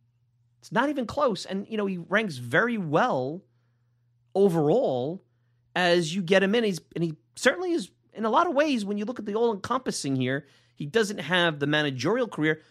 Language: English